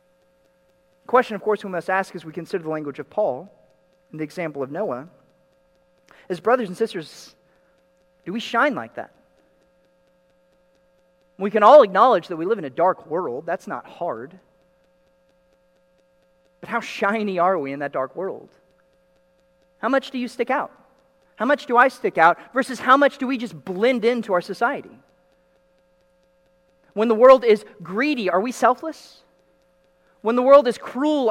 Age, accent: 40-59, American